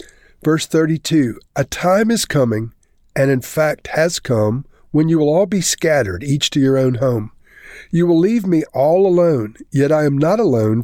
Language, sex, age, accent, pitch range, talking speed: English, male, 50-69, American, 120-160 Hz, 185 wpm